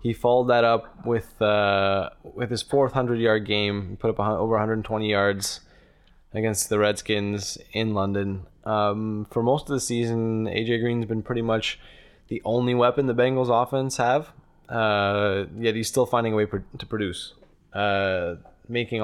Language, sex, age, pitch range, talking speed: English, male, 20-39, 105-120 Hz, 160 wpm